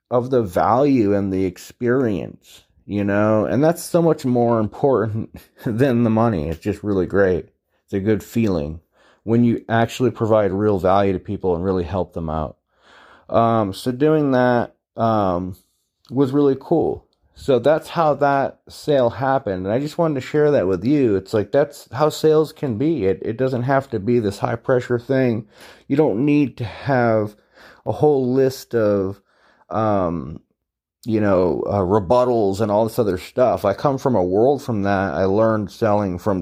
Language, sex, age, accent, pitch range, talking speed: English, male, 30-49, American, 100-130 Hz, 180 wpm